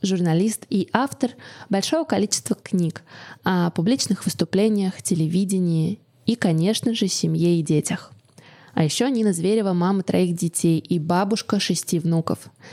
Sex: female